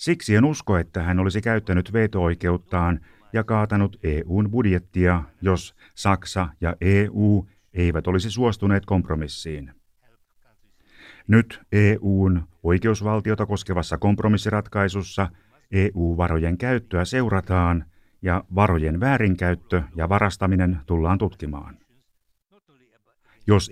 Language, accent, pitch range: Finnish, native, 90-110 Hz